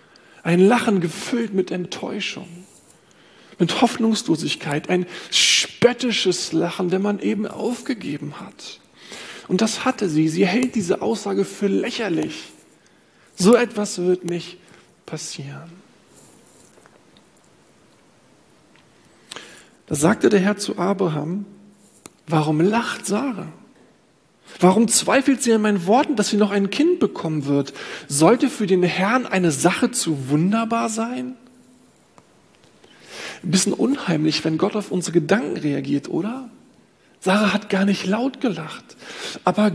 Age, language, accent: 40-59, German, German